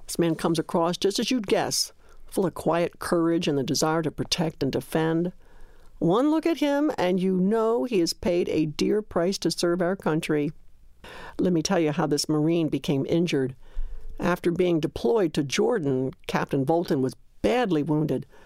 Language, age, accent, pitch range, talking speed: English, 60-79, American, 155-210 Hz, 180 wpm